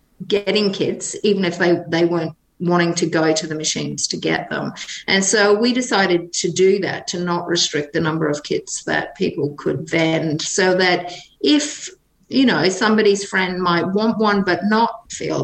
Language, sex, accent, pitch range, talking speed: English, female, Australian, 165-205 Hz, 185 wpm